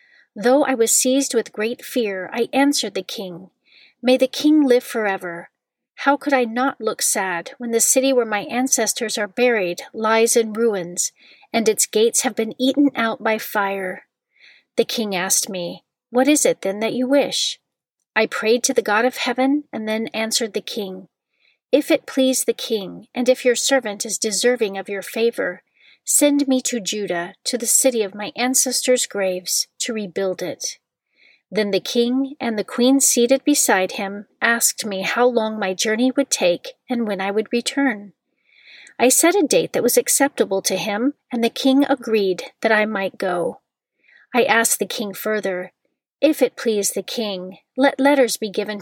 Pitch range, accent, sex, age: 210-260 Hz, American, female, 40-59